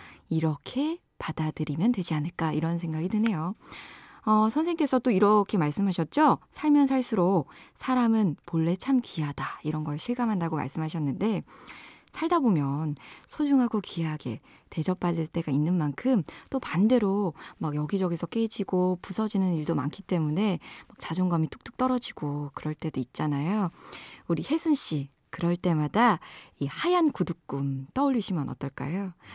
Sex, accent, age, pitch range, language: female, native, 20-39, 160-245 Hz, Korean